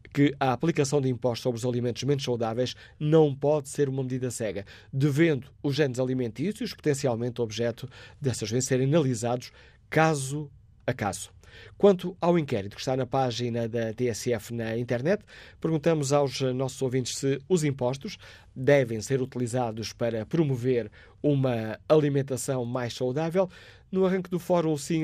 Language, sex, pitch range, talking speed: Portuguese, male, 120-150 Hz, 145 wpm